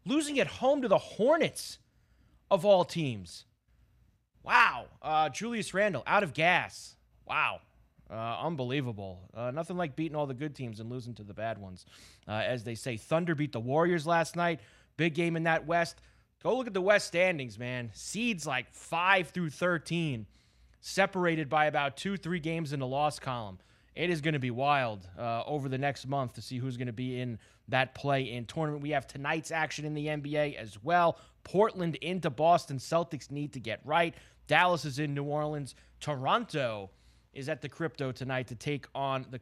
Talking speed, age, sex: 185 wpm, 30-49, male